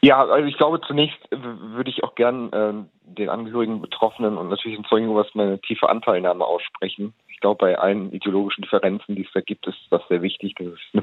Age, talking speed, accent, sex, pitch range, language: 40-59, 210 wpm, German, male, 100-120 Hz, German